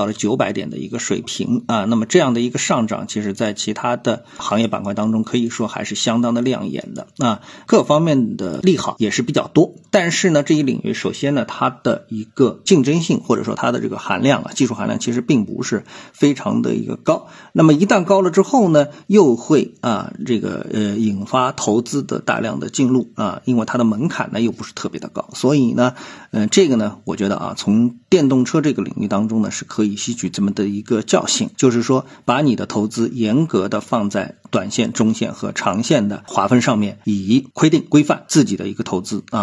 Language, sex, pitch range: Chinese, male, 110-160 Hz